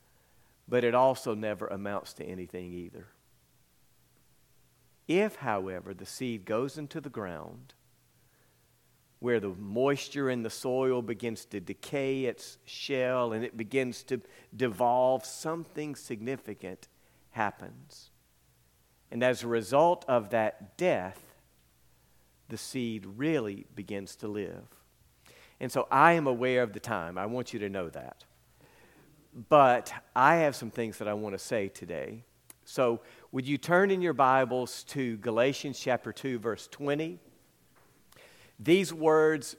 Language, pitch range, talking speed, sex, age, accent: English, 115-160 Hz, 135 wpm, male, 50-69, American